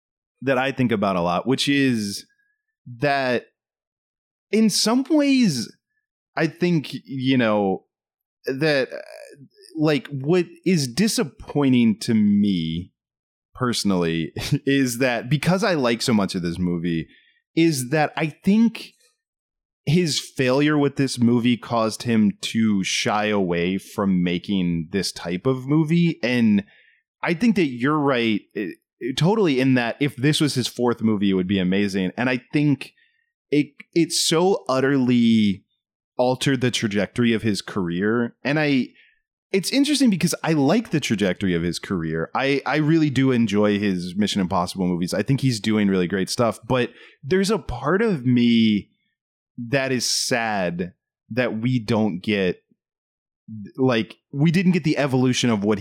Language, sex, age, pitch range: English, male, 20-39, 105-155 Hz